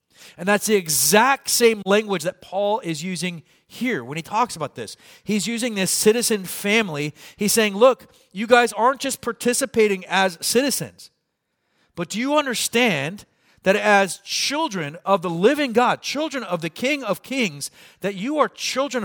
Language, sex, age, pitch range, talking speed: English, male, 40-59, 135-215 Hz, 165 wpm